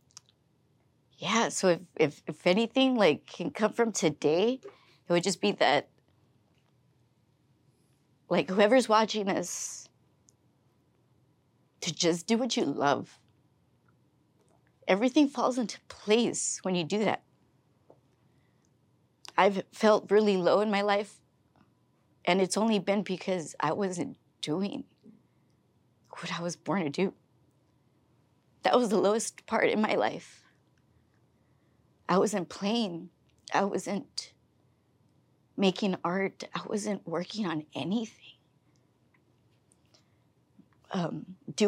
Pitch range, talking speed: 140-215 Hz, 110 wpm